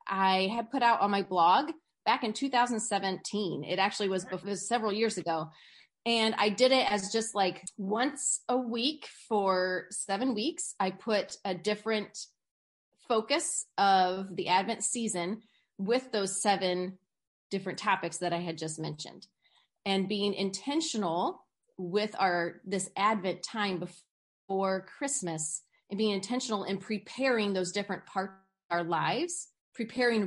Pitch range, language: 180-220 Hz, English